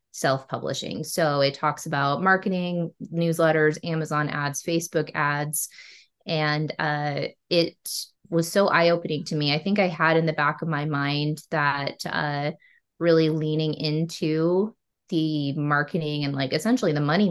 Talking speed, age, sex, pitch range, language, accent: 140 wpm, 20-39, female, 150-170 Hz, English, American